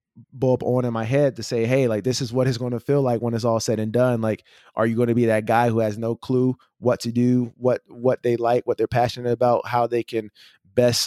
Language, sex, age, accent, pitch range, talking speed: English, male, 20-39, American, 115-130 Hz, 260 wpm